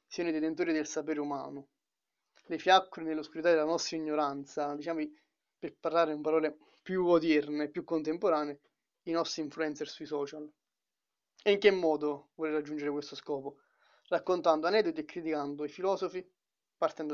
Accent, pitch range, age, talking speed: native, 150-170 Hz, 20-39, 145 wpm